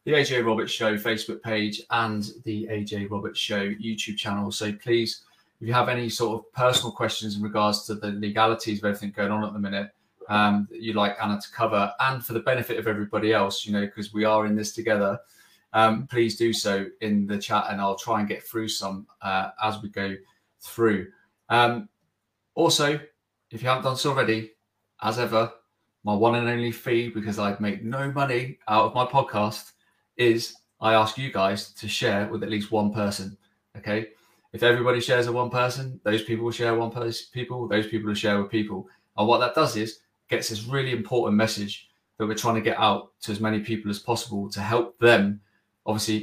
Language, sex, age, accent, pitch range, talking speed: English, male, 30-49, British, 105-115 Hz, 205 wpm